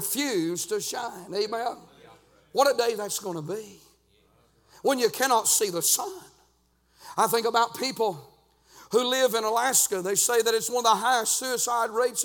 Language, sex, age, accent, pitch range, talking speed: English, male, 50-69, American, 230-275 Hz, 165 wpm